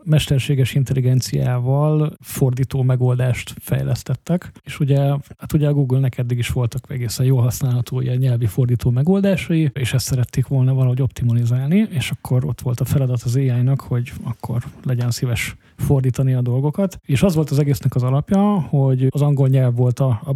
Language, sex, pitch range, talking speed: Hungarian, male, 125-150 Hz, 165 wpm